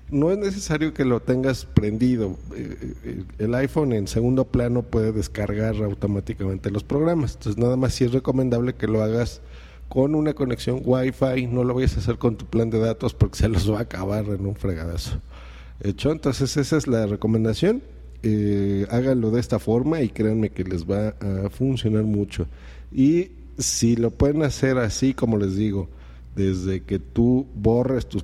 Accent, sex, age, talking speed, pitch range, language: Mexican, male, 50-69, 170 wpm, 95-130 Hz, Spanish